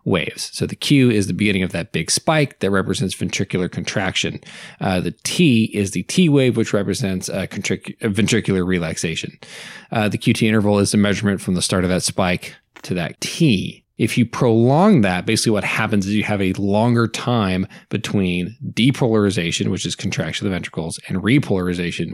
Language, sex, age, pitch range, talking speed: English, male, 20-39, 95-120 Hz, 175 wpm